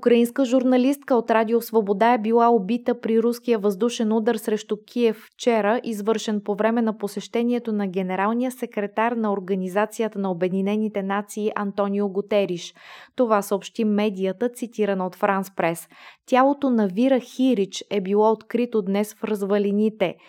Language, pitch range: Bulgarian, 200-235 Hz